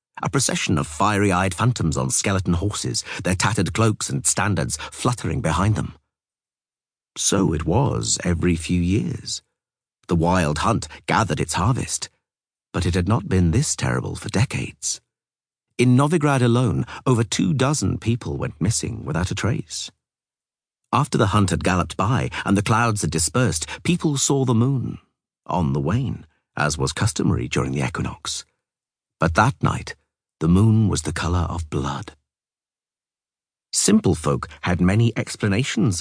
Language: English